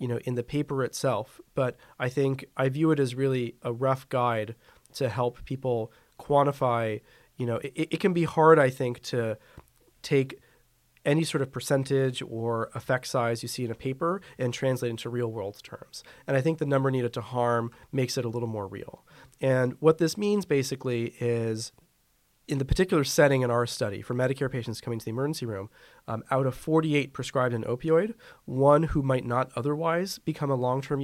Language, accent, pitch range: English, American, 120-145 Hz